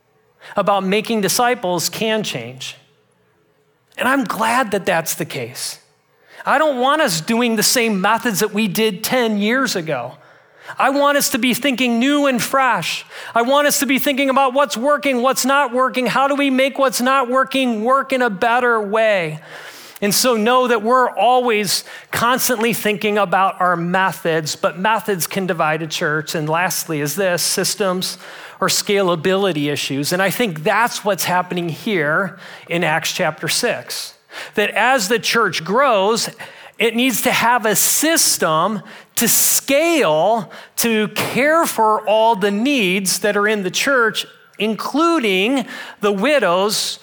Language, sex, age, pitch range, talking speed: English, male, 40-59, 190-255 Hz, 155 wpm